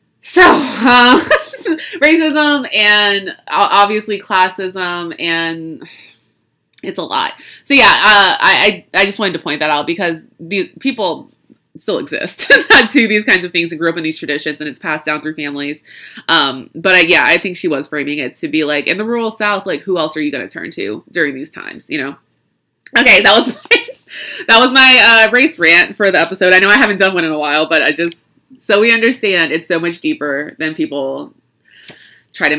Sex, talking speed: female, 205 wpm